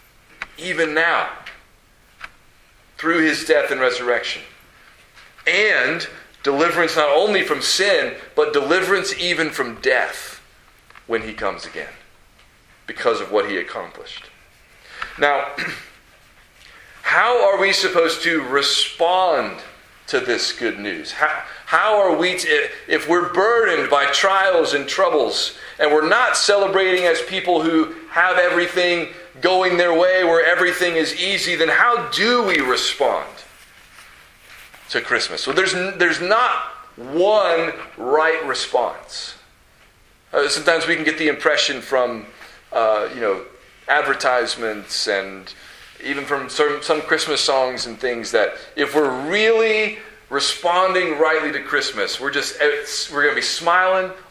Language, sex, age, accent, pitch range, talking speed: English, male, 40-59, American, 150-190 Hz, 125 wpm